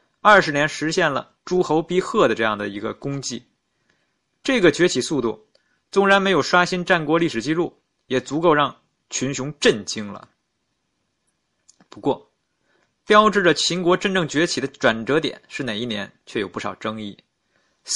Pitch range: 135-195 Hz